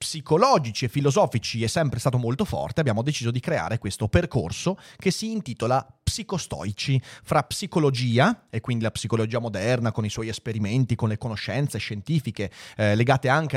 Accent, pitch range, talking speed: native, 115-165 Hz, 160 wpm